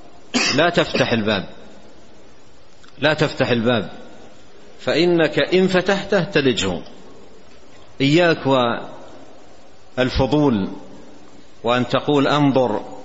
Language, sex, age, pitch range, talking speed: Arabic, male, 50-69, 125-155 Hz, 70 wpm